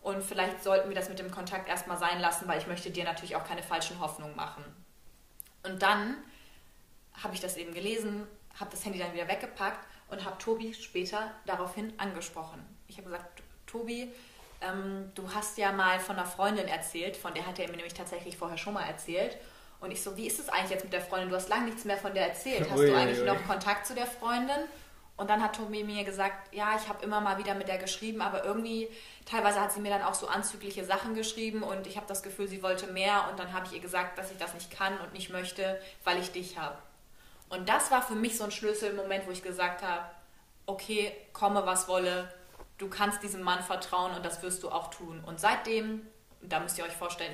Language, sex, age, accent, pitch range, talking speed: German, female, 20-39, German, 180-210 Hz, 225 wpm